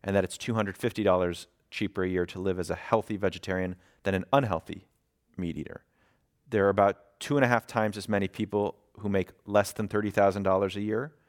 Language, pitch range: English, 95-110 Hz